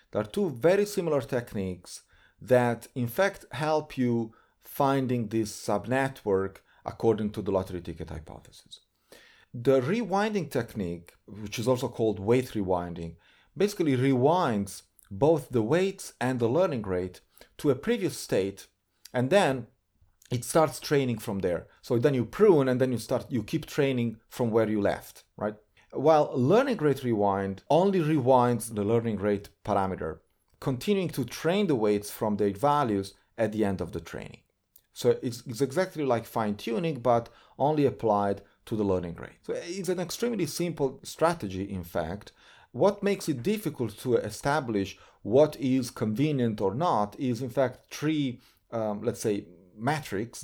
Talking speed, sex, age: 155 wpm, male, 40-59